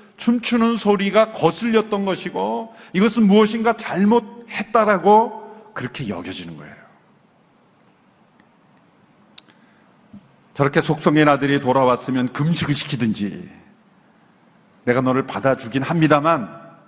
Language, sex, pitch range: Korean, male, 125-205 Hz